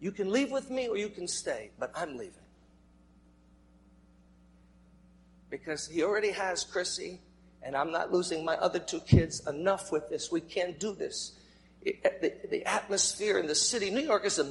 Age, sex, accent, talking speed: 60-79, male, American, 175 wpm